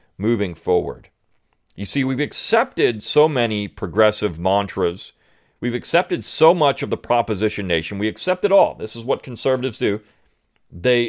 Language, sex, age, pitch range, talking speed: English, male, 40-59, 95-135 Hz, 150 wpm